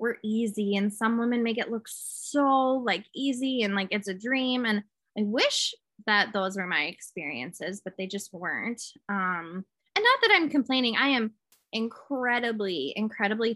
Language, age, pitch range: English, 20-39, 185-235 Hz